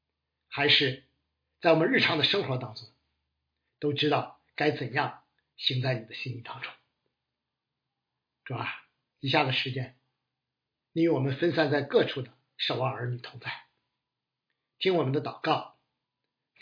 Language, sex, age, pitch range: Chinese, male, 50-69, 125-165 Hz